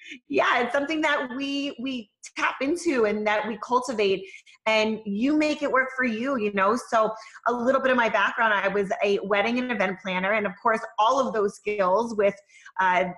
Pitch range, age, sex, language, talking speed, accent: 205-260 Hz, 20-39, female, English, 200 wpm, American